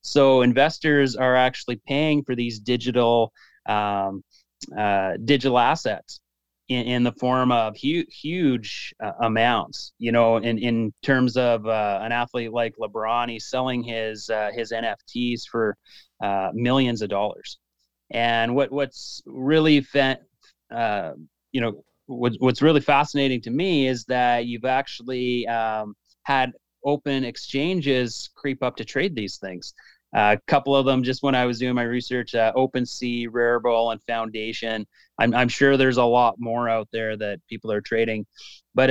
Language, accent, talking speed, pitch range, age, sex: English, American, 155 wpm, 115-135 Hz, 30-49, male